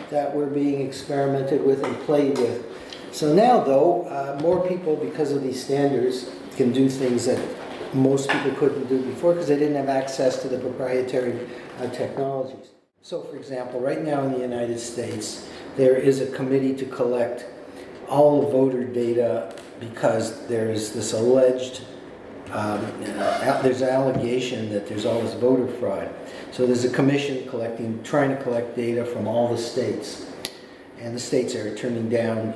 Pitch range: 120-135 Hz